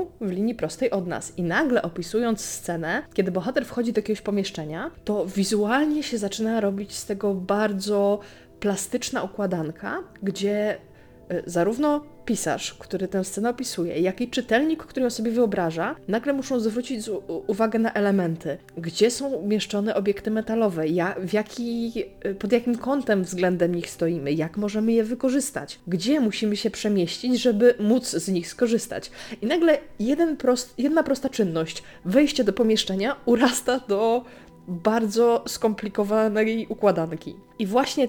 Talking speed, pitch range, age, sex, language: 140 wpm, 195-240 Hz, 20-39, female, Polish